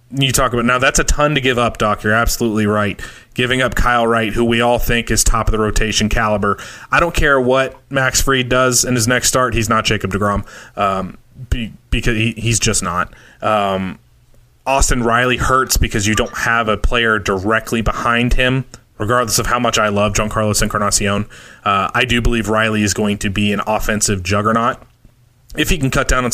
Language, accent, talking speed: English, American, 205 wpm